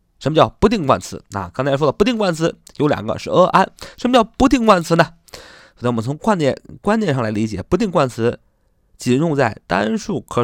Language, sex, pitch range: Chinese, male, 115-165 Hz